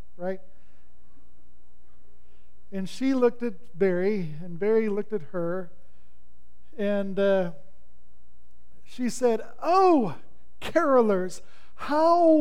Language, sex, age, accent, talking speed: English, male, 40-59, American, 85 wpm